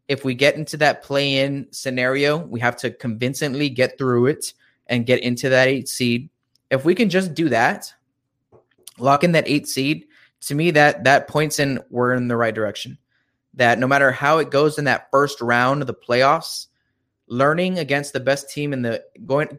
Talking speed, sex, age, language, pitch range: 195 wpm, male, 20-39, English, 120-140 Hz